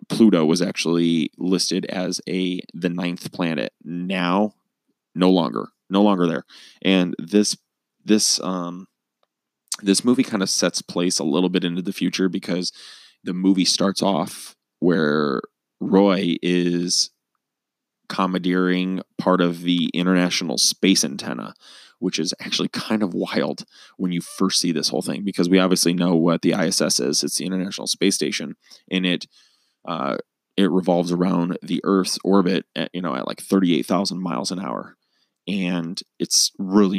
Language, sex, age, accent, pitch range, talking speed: English, male, 20-39, American, 90-95 Hz, 150 wpm